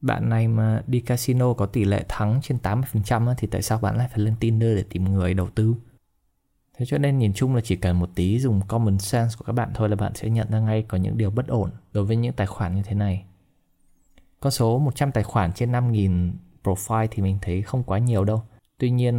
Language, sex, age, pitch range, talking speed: Vietnamese, male, 20-39, 100-120 Hz, 245 wpm